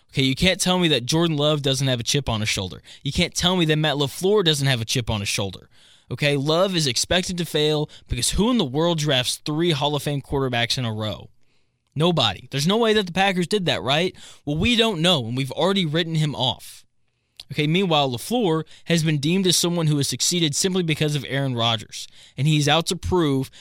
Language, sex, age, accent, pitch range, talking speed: English, male, 20-39, American, 120-170 Hz, 230 wpm